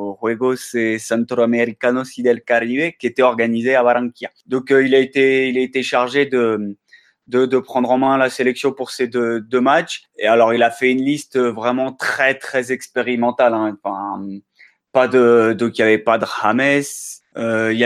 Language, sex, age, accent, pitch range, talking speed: French, male, 20-39, French, 115-135 Hz, 200 wpm